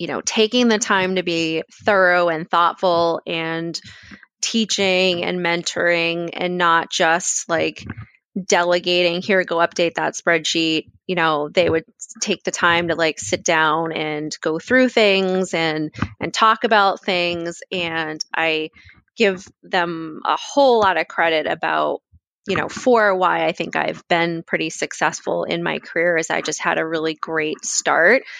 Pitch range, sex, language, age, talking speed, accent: 160-185 Hz, female, English, 20-39, 160 wpm, American